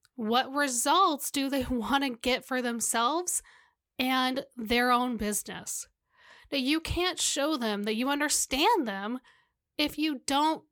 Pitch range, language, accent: 235-300 Hz, English, American